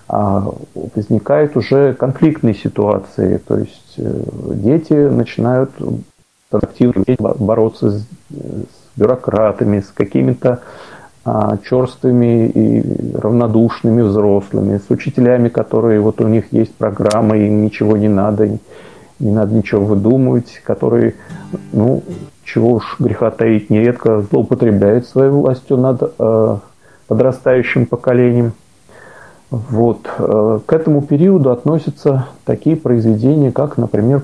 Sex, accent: male, native